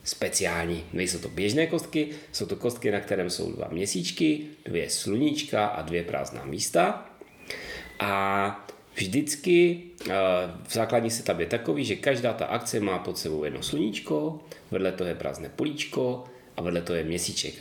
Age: 30-49